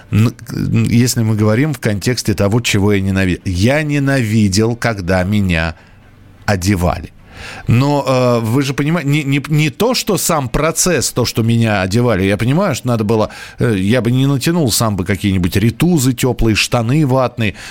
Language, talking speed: Russian, 160 wpm